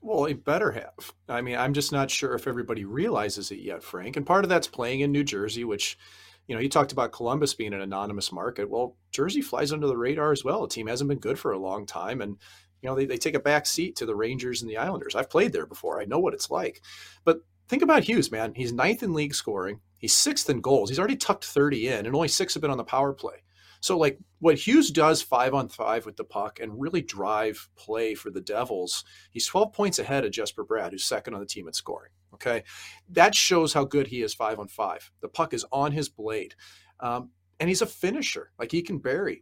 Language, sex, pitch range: English, male, 110-180 Hz